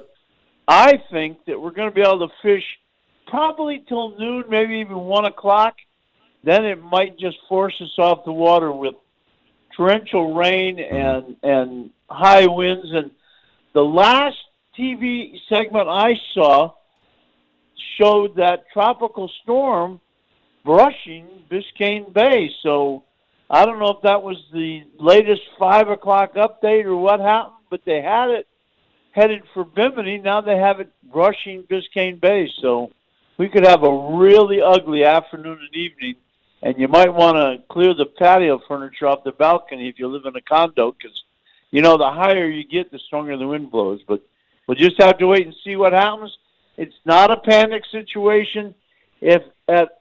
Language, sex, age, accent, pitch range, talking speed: English, male, 50-69, American, 160-205 Hz, 160 wpm